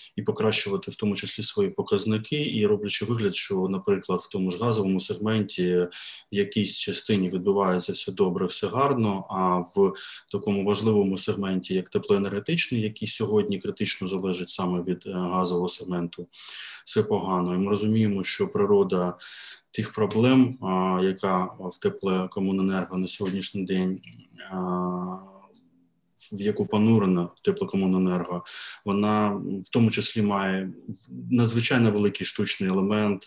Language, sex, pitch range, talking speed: Ukrainian, male, 95-110 Hz, 130 wpm